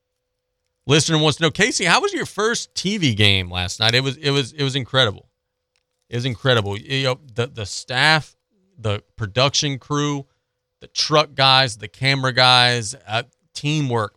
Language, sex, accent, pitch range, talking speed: English, male, American, 110-135 Hz, 165 wpm